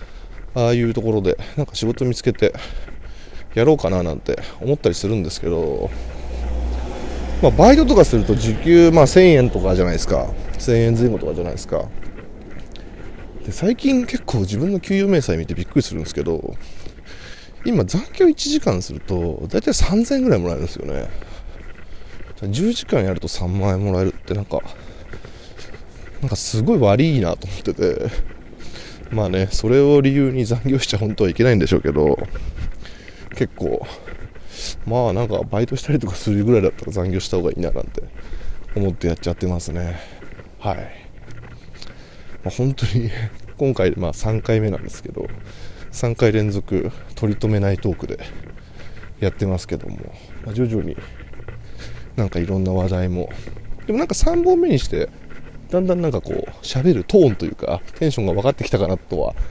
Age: 20-39